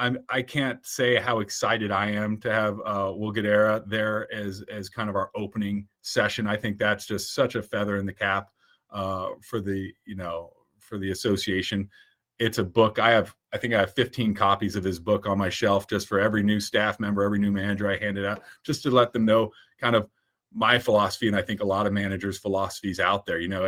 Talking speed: 220 wpm